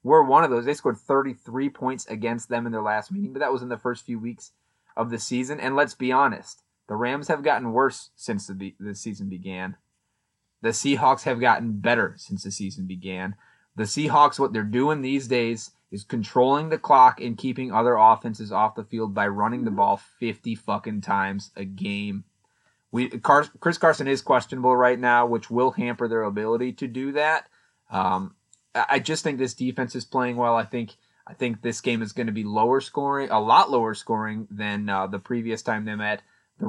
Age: 30-49